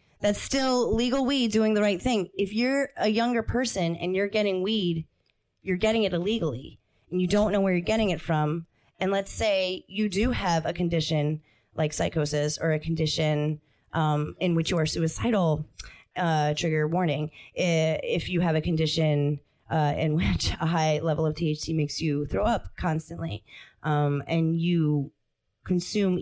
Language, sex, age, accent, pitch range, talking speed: English, female, 30-49, American, 155-230 Hz, 170 wpm